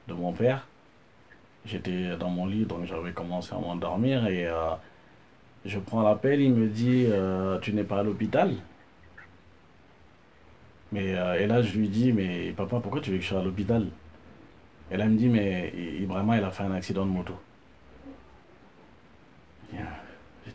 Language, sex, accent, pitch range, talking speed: French, male, French, 95-120 Hz, 170 wpm